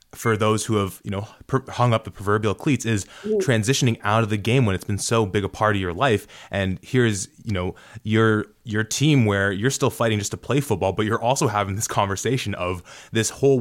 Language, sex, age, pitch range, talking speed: English, male, 20-39, 100-120 Hz, 225 wpm